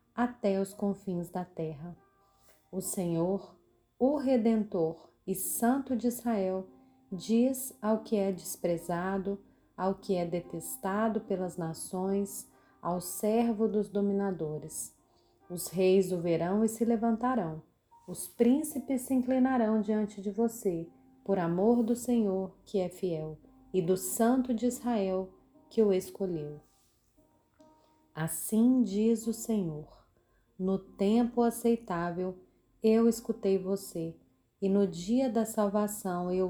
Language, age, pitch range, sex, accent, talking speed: Portuguese, 30-49, 180-230 Hz, female, Brazilian, 120 wpm